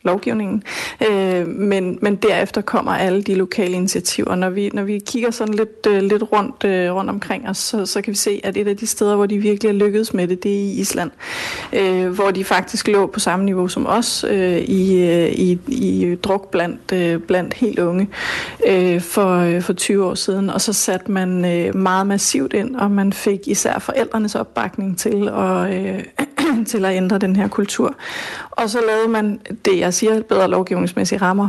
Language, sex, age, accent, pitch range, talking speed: Danish, female, 30-49, native, 185-215 Hz, 180 wpm